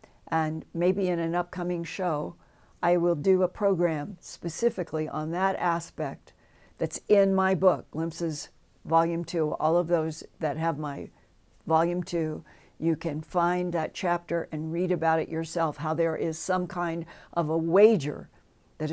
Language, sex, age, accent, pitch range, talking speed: English, female, 60-79, American, 160-180 Hz, 155 wpm